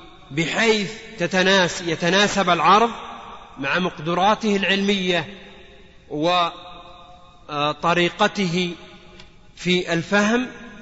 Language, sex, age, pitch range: Arabic, male, 40-59, 150-195 Hz